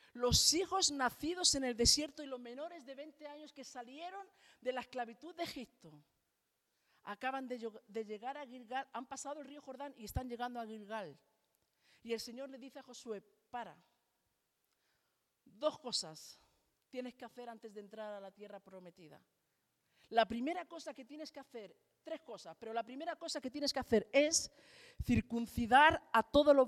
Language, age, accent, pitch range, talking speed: Spanish, 50-69, Spanish, 220-290 Hz, 175 wpm